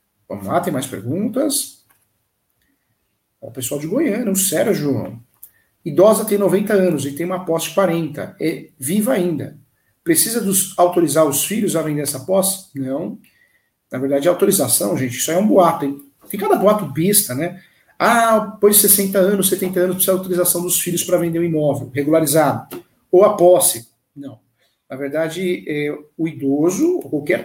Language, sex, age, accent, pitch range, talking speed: Portuguese, male, 50-69, Brazilian, 150-195 Hz, 160 wpm